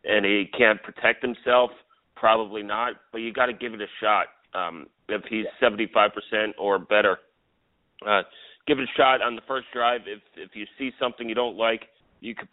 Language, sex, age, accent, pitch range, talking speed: English, male, 30-49, American, 100-115 Hz, 195 wpm